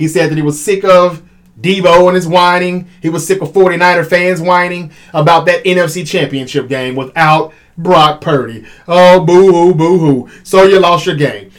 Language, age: English, 30-49